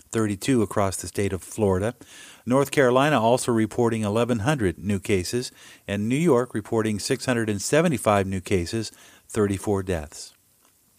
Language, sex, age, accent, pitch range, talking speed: English, male, 50-69, American, 105-125 Hz, 120 wpm